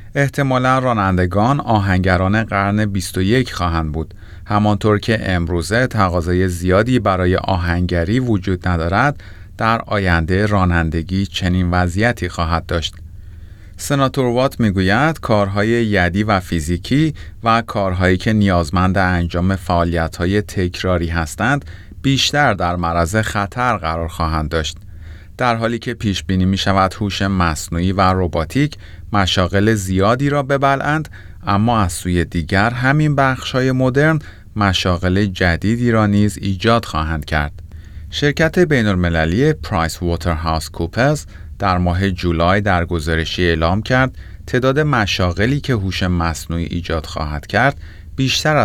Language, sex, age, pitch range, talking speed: Persian, male, 30-49, 85-110 Hz, 115 wpm